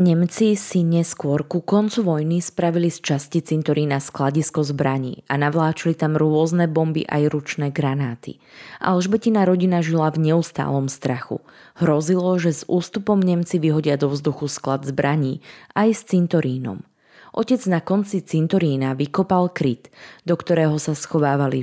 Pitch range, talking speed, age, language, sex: 145-175 Hz, 135 wpm, 20-39, Slovak, female